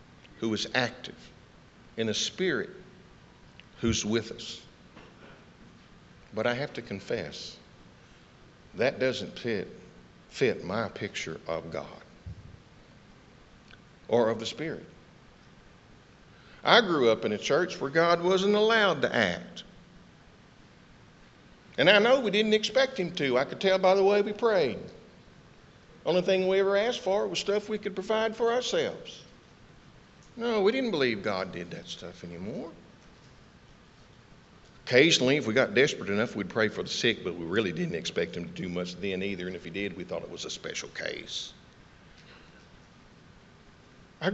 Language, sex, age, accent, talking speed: English, male, 60-79, American, 150 wpm